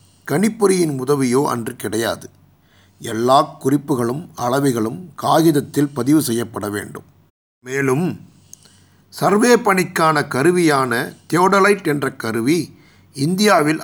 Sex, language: male, Tamil